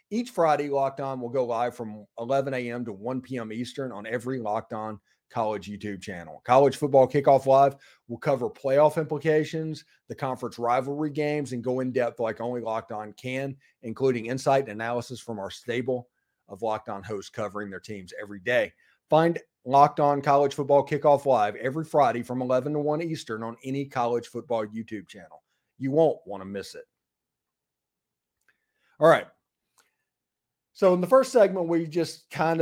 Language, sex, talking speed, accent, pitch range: English, male, 175 wpm, American, 120-150 Hz